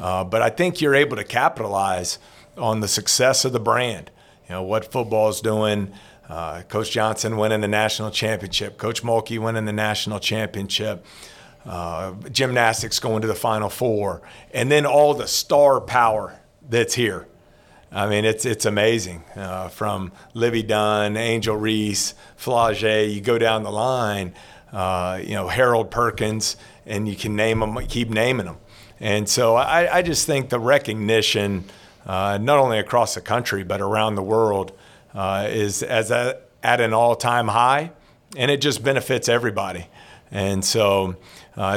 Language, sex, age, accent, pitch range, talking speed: English, male, 50-69, American, 105-120 Hz, 155 wpm